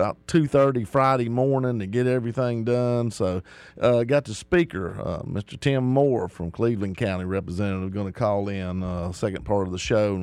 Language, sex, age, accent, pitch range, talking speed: English, male, 50-69, American, 100-120 Hz, 200 wpm